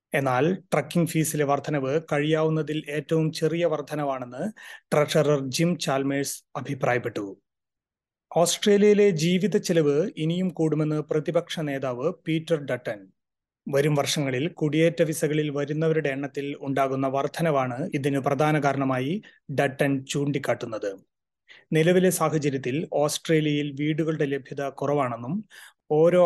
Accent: native